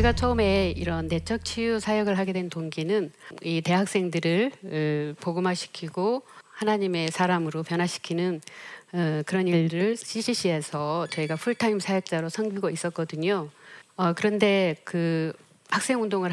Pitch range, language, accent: 165-200 Hz, Korean, native